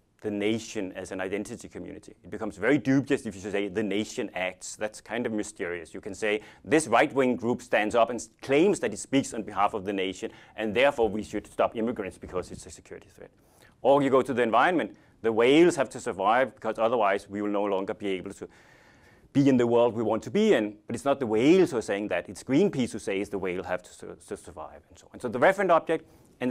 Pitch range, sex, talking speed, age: 105-125 Hz, male, 240 wpm, 30-49